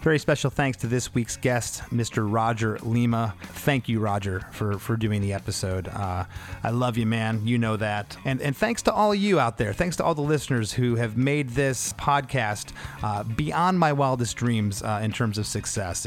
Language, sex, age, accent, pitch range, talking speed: English, male, 30-49, American, 110-140 Hz, 205 wpm